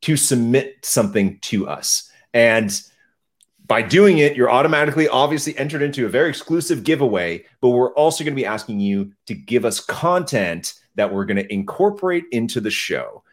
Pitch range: 115-185 Hz